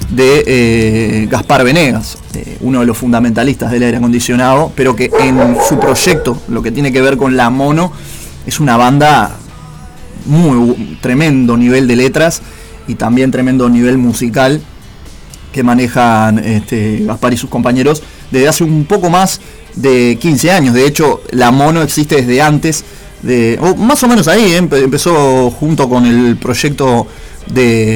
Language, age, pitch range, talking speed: Spanish, 20-39, 120-145 Hz, 160 wpm